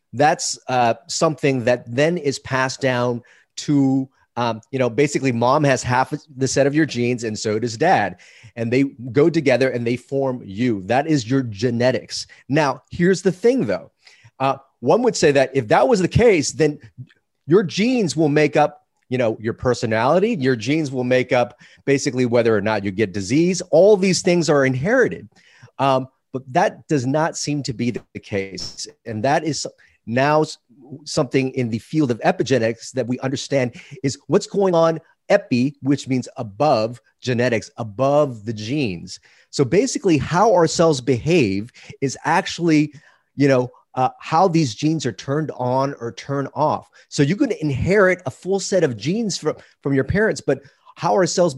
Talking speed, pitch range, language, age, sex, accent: 175 wpm, 125-155 Hz, English, 30-49, male, American